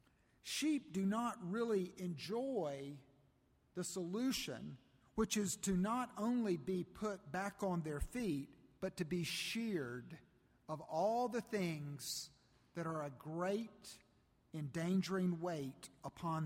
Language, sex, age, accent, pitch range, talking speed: English, male, 50-69, American, 165-220 Hz, 120 wpm